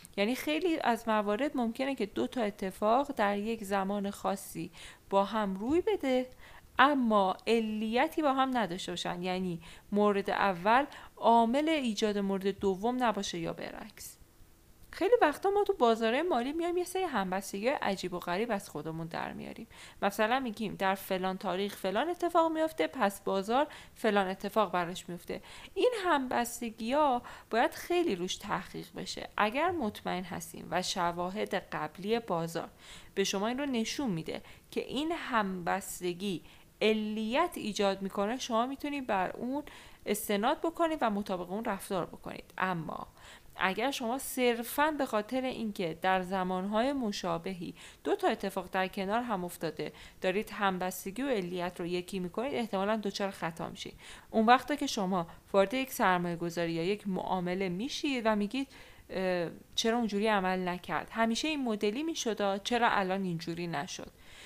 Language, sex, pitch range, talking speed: Persian, female, 190-255 Hz, 145 wpm